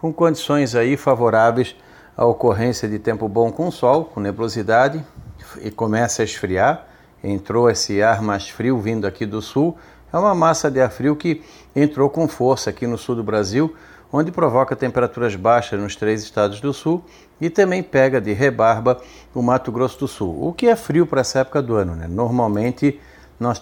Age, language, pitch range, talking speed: 50-69, Portuguese, 110-135 Hz, 185 wpm